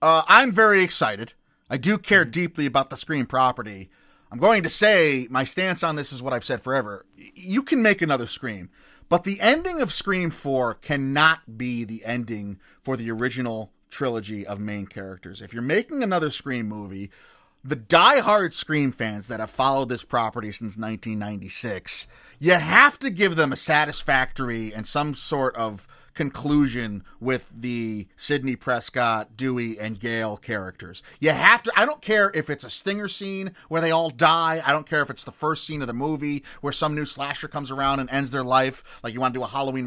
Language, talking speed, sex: English, 190 wpm, male